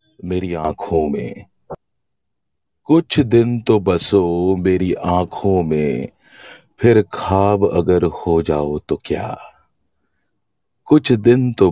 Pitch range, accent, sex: 85-105 Hz, native, male